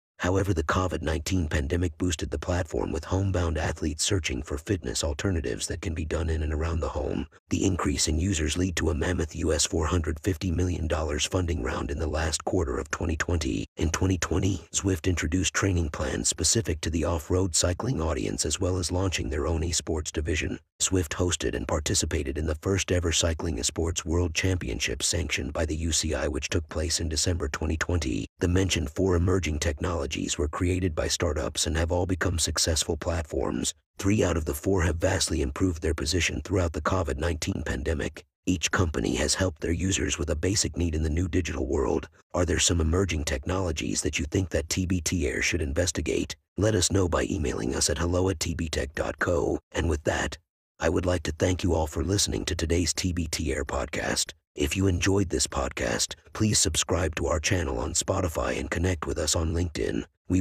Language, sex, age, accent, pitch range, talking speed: English, male, 50-69, American, 80-95 Hz, 185 wpm